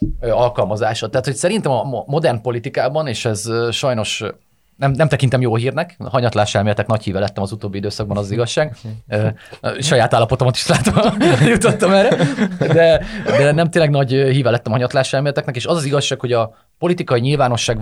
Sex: male